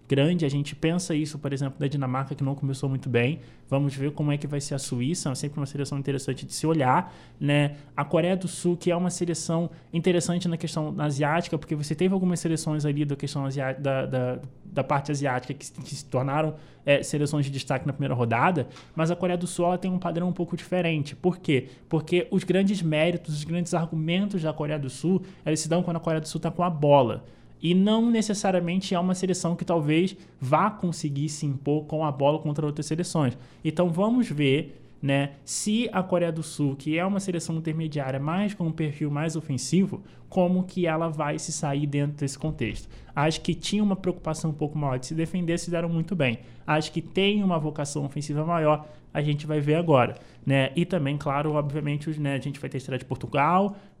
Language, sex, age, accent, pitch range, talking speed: Portuguese, male, 20-39, Brazilian, 140-175 Hz, 215 wpm